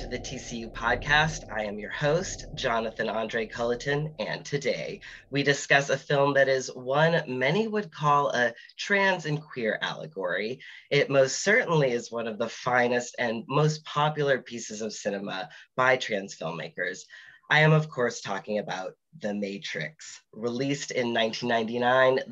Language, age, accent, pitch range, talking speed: English, 30-49, American, 115-145 Hz, 150 wpm